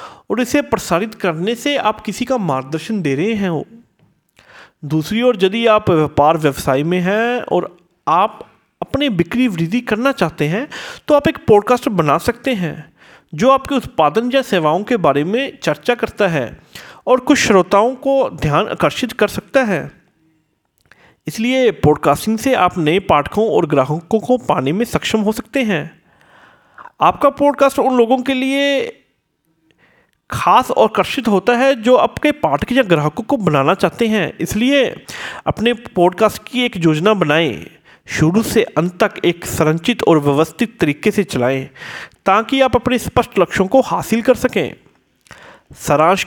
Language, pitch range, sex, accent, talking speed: Hindi, 165-250 Hz, male, native, 155 wpm